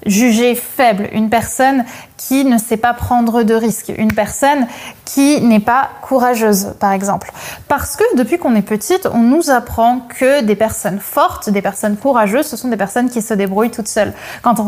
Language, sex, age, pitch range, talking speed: French, female, 20-39, 215-265 Hz, 190 wpm